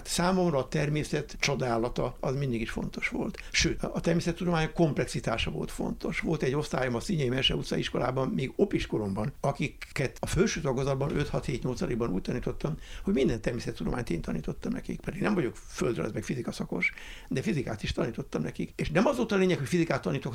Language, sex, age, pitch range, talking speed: Hungarian, male, 60-79, 125-175 Hz, 180 wpm